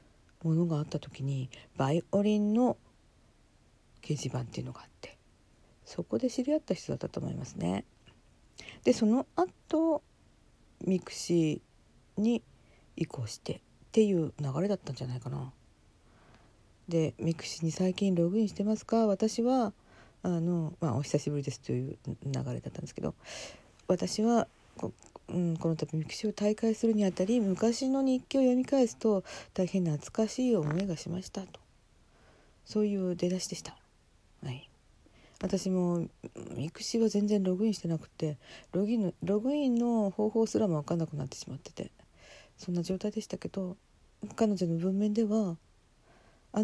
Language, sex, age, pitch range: Japanese, female, 50-69, 145-220 Hz